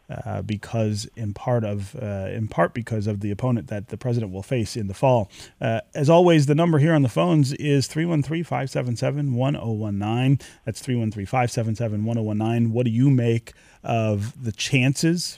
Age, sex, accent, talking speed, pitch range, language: 30-49, male, American, 155 wpm, 110-145 Hz, English